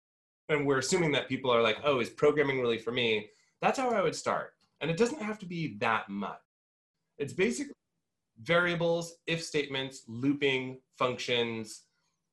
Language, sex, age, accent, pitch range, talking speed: English, male, 30-49, American, 115-165 Hz, 160 wpm